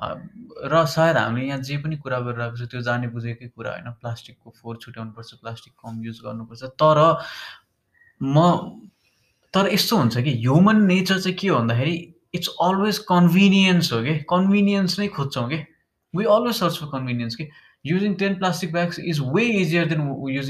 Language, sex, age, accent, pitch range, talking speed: English, male, 20-39, Indian, 125-175 Hz, 55 wpm